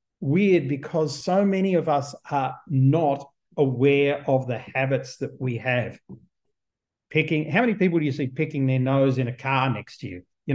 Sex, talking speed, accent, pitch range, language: male, 180 wpm, Australian, 130-160 Hz, English